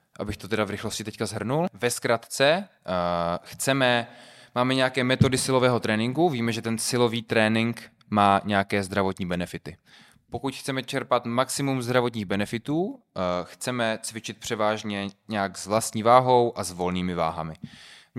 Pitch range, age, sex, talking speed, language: 90-115 Hz, 20-39, male, 135 wpm, Czech